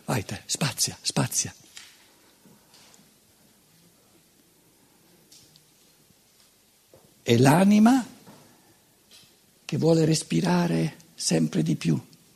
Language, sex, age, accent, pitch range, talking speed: Italian, male, 60-79, native, 155-240 Hz, 55 wpm